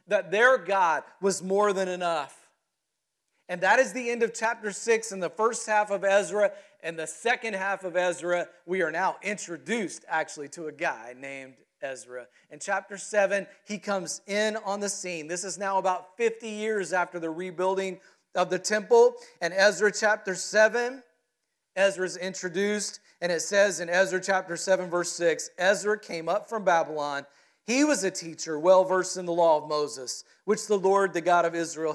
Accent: American